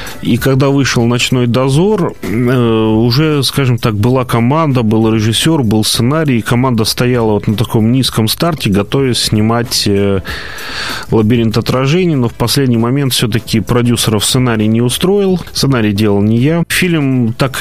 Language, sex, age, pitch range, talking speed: Russian, male, 30-49, 105-130 Hz, 135 wpm